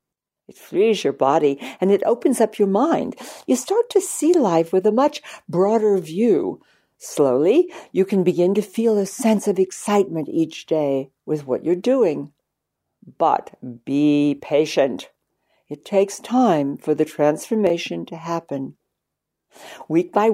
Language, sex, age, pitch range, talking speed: English, female, 60-79, 150-215 Hz, 145 wpm